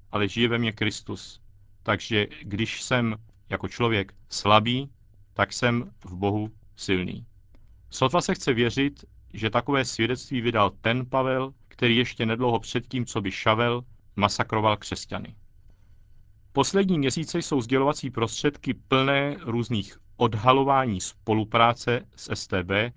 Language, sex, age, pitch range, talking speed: Czech, male, 40-59, 105-125 Hz, 120 wpm